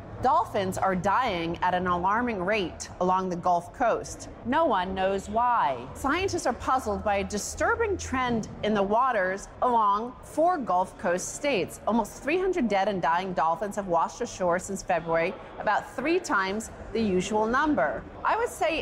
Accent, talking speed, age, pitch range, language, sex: American, 160 wpm, 40-59, 190-245 Hz, English, female